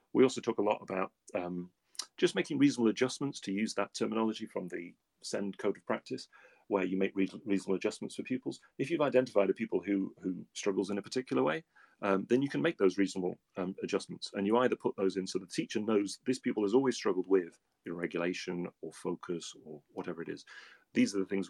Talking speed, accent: 220 wpm, British